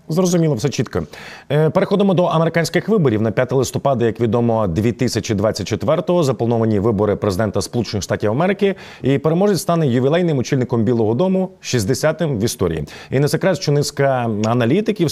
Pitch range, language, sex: 115-160 Hz, Ukrainian, male